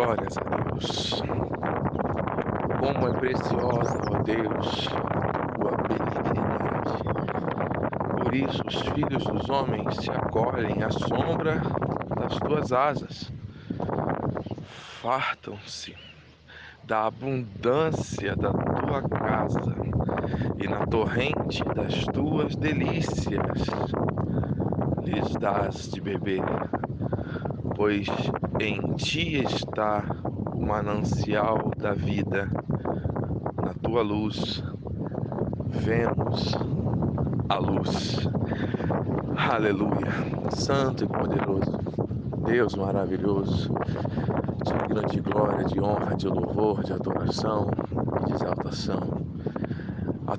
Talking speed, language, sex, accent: 85 wpm, Portuguese, male, Brazilian